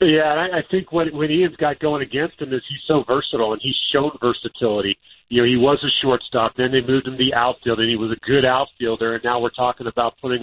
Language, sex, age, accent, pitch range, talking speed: English, male, 40-59, American, 115-140 Hz, 240 wpm